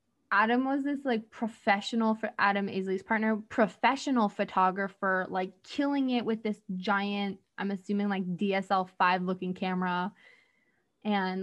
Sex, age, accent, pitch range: female, 20-39, American, 200-235 Hz